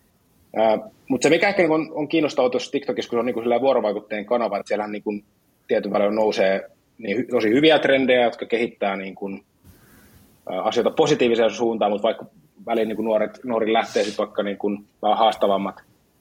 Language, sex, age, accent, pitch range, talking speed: Finnish, male, 20-39, native, 105-130 Hz, 125 wpm